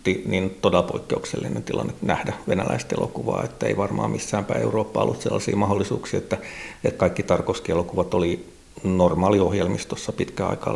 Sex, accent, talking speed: male, native, 130 wpm